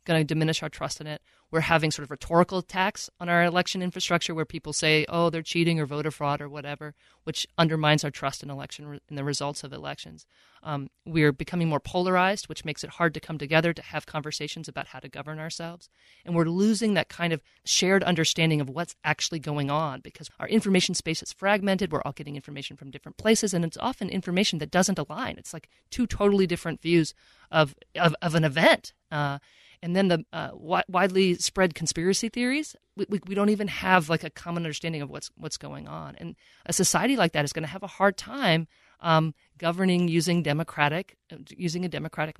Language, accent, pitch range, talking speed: English, American, 150-180 Hz, 210 wpm